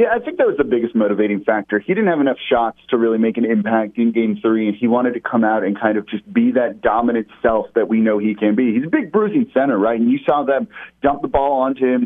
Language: English